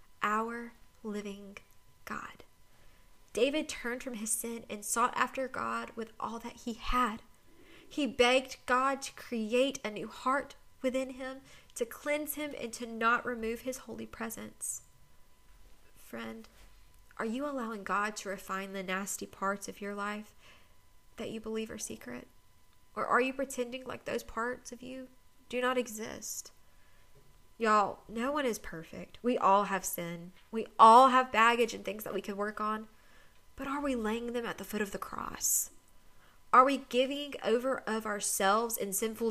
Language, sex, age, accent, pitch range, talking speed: English, female, 20-39, American, 200-245 Hz, 160 wpm